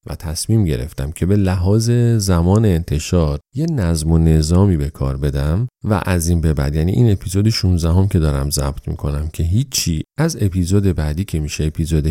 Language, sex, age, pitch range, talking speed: Persian, male, 40-59, 75-100 Hz, 180 wpm